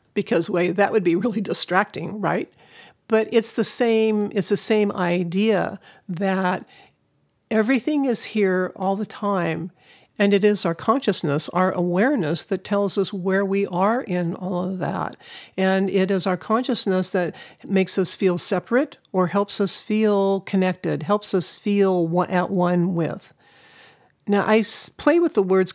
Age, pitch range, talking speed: 50-69, 175-200 Hz, 155 wpm